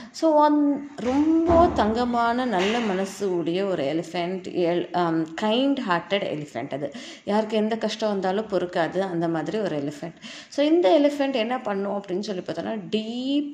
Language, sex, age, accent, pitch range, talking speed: Tamil, female, 20-39, native, 180-250 Hz, 140 wpm